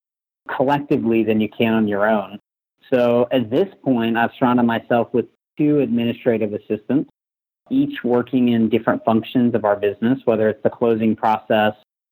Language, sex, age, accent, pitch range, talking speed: English, male, 30-49, American, 110-120 Hz, 155 wpm